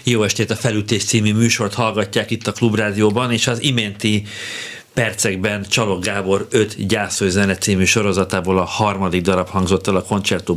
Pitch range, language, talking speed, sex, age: 95-115 Hz, Hungarian, 160 wpm, male, 50-69